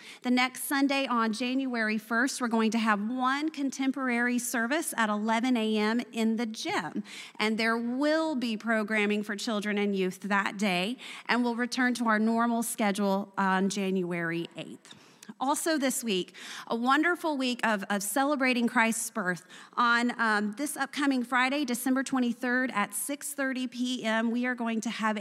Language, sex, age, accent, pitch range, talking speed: English, female, 30-49, American, 205-250 Hz, 155 wpm